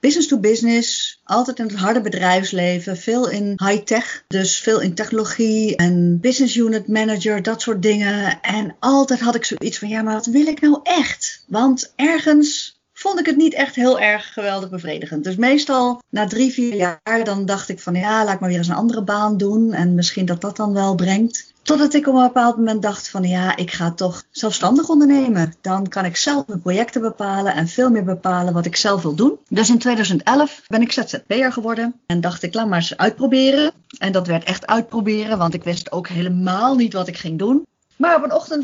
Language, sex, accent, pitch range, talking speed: Dutch, female, Dutch, 190-245 Hz, 215 wpm